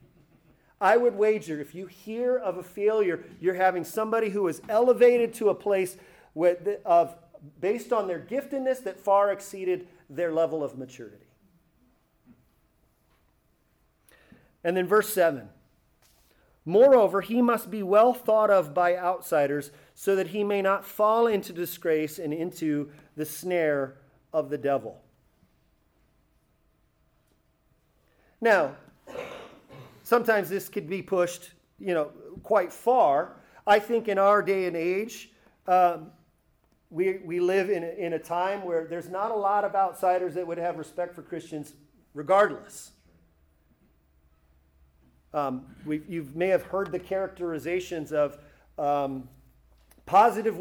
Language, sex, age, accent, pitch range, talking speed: English, male, 40-59, American, 160-210 Hz, 125 wpm